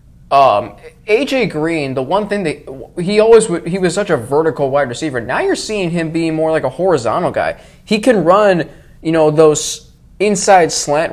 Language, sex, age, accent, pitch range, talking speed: English, male, 20-39, American, 145-195 Hz, 190 wpm